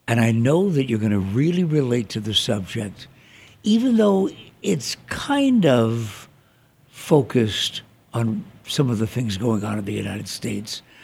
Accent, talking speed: American, 160 wpm